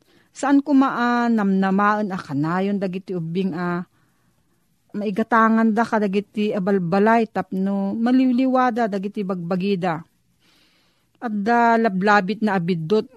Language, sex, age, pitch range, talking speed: Filipino, female, 40-59, 185-230 Hz, 110 wpm